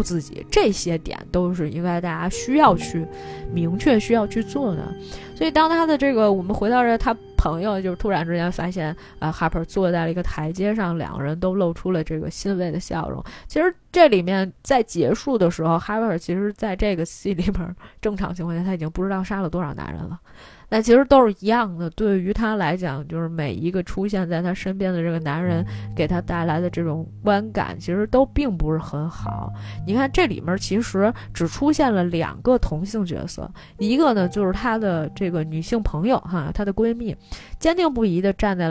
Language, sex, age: Chinese, female, 20-39